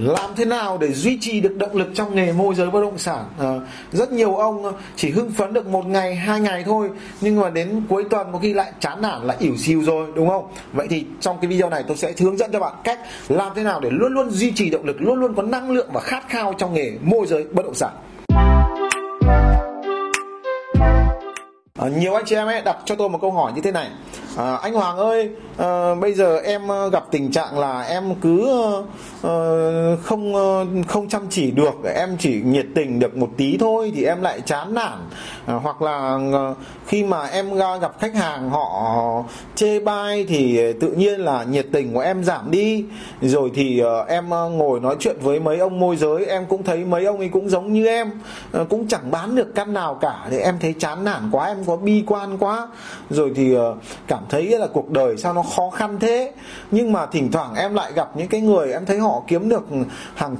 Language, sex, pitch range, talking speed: Vietnamese, male, 160-215 Hz, 225 wpm